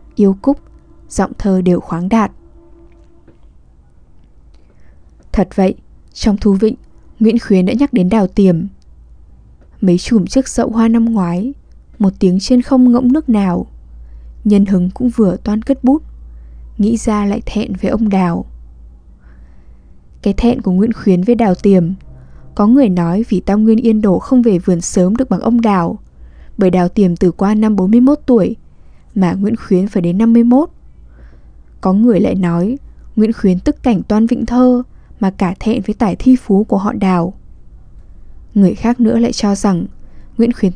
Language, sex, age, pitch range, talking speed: Vietnamese, female, 10-29, 175-230 Hz, 170 wpm